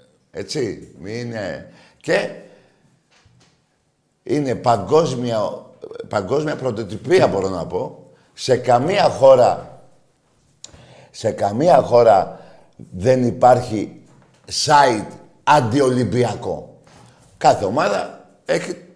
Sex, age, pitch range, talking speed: male, 50-69, 100-150 Hz, 70 wpm